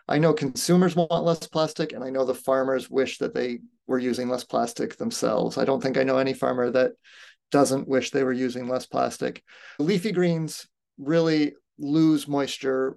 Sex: male